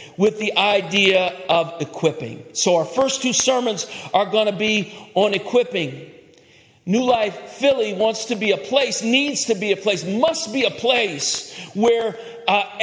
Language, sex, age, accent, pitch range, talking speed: English, male, 50-69, American, 200-265 Hz, 165 wpm